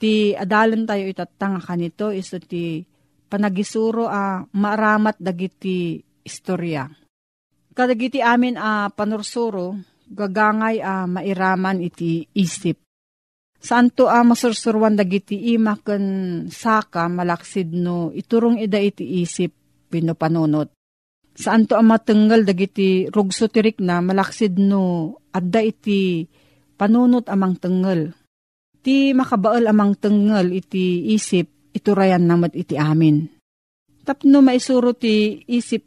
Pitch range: 175-215 Hz